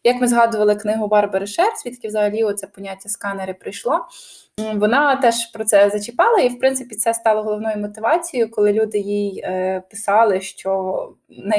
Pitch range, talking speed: 205-245 Hz, 155 wpm